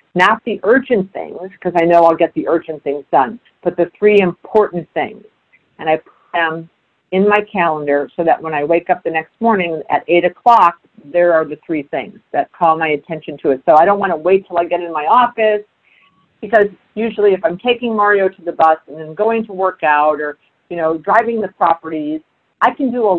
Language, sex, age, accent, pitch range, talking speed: English, female, 50-69, American, 160-195 Hz, 220 wpm